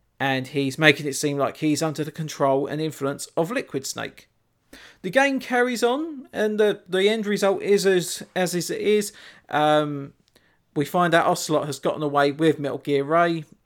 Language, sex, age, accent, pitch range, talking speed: English, male, 40-59, British, 140-185 Hz, 180 wpm